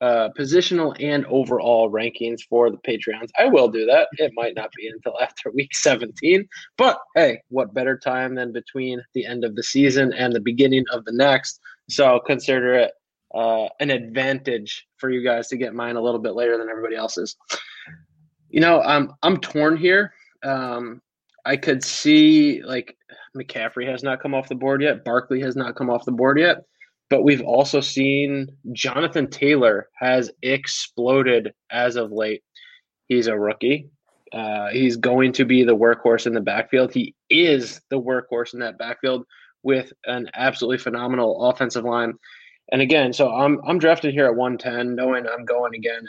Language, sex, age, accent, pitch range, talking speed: English, male, 20-39, American, 120-140 Hz, 175 wpm